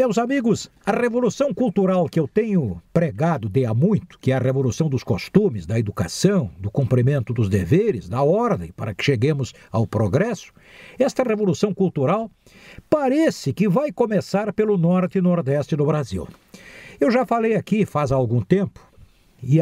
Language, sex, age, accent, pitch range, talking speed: Portuguese, male, 60-79, Brazilian, 135-205 Hz, 160 wpm